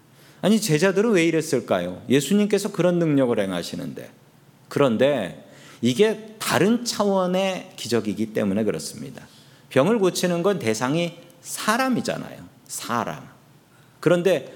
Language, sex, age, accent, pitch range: Korean, male, 40-59, native, 140-205 Hz